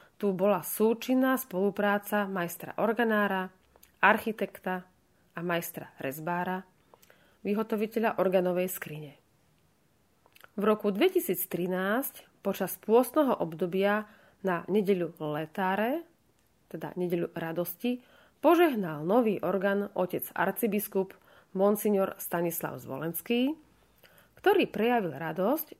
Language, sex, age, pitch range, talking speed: Slovak, female, 30-49, 180-220 Hz, 85 wpm